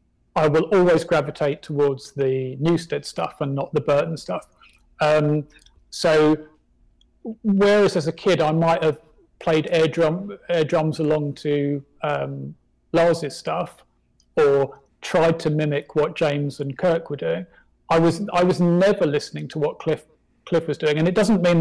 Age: 40-59